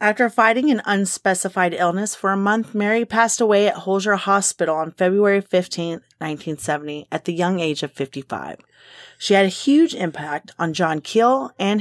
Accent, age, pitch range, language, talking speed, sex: American, 30-49, 170-225 Hz, English, 170 wpm, female